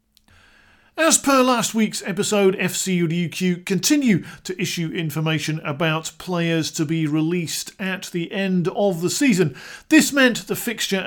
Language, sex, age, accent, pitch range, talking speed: English, male, 50-69, British, 165-220 Hz, 140 wpm